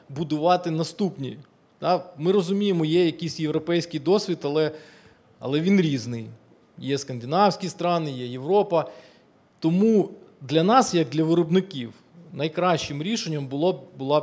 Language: Ukrainian